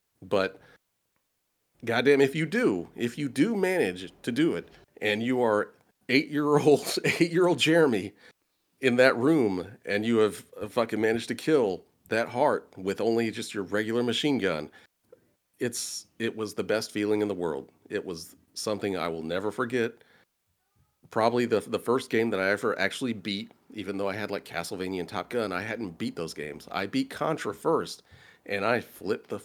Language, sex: English, male